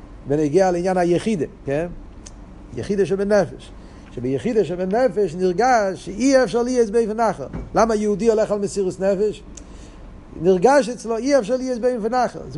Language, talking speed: Hebrew, 135 wpm